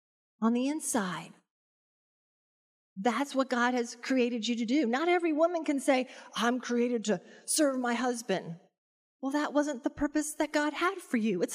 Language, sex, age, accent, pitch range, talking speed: English, female, 40-59, American, 230-310 Hz, 170 wpm